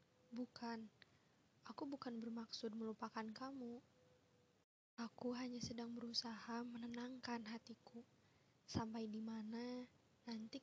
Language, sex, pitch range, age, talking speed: Indonesian, female, 230-260 Hz, 20-39, 85 wpm